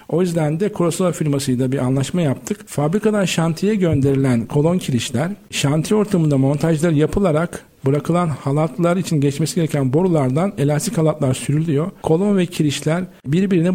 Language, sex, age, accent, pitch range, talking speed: Turkish, male, 50-69, native, 140-175 Hz, 130 wpm